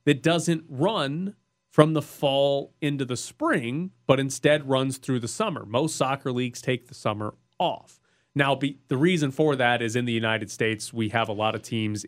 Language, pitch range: English, 115-150 Hz